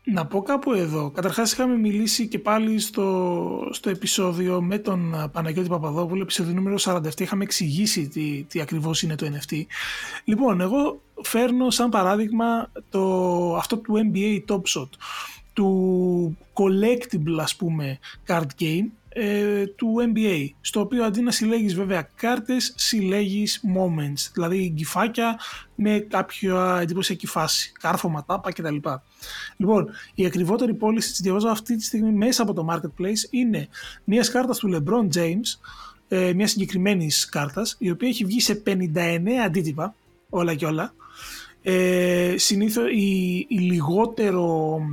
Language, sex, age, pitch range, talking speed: Greek, male, 20-39, 175-220 Hz, 135 wpm